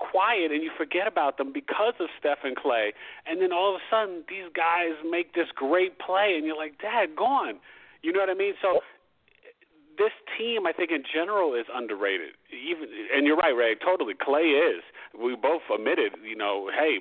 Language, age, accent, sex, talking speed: English, 40-59, American, male, 200 wpm